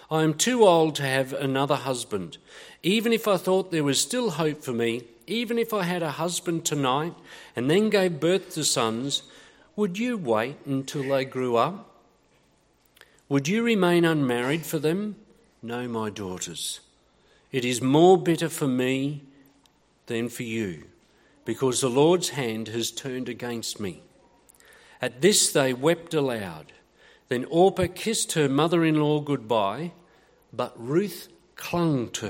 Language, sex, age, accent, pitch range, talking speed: English, male, 50-69, Australian, 125-180 Hz, 145 wpm